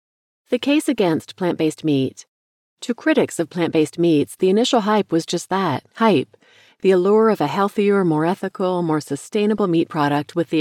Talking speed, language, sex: 170 wpm, English, female